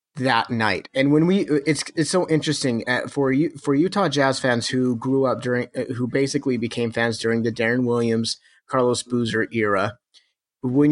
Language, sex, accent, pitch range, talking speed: English, male, American, 115-140 Hz, 165 wpm